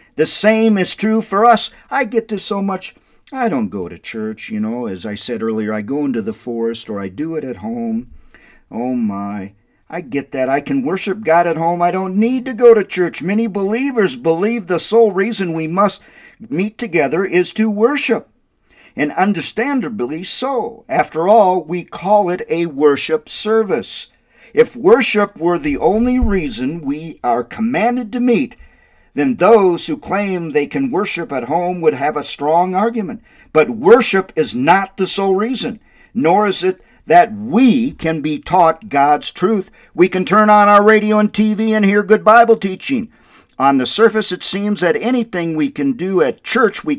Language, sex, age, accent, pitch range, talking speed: English, male, 50-69, American, 160-225 Hz, 185 wpm